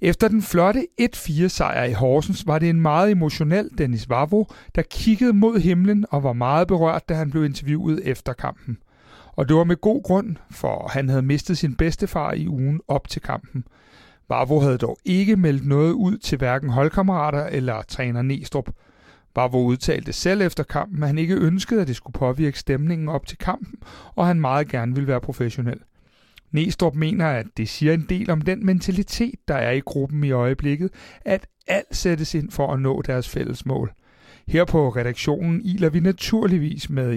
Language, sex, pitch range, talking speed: Danish, male, 130-180 Hz, 185 wpm